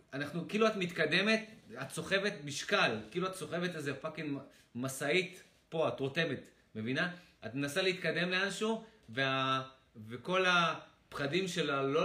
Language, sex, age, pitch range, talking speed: Hebrew, male, 30-49, 130-170 Hz, 130 wpm